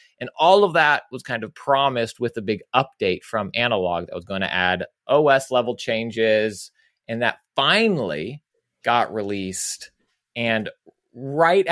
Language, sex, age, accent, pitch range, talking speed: English, male, 30-49, American, 100-135 Hz, 150 wpm